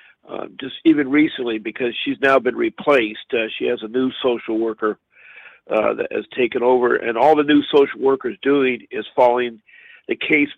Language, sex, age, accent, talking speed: English, male, 50-69, American, 185 wpm